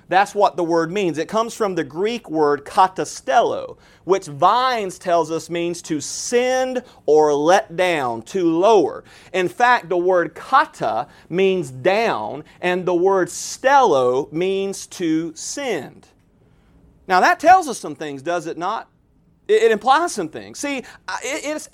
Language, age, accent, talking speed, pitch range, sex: English, 40-59, American, 145 wpm, 175-260 Hz, male